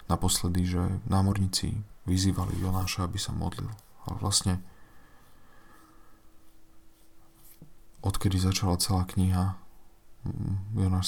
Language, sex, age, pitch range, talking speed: Slovak, male, 40-59, 90-105 Hz, 80 wpm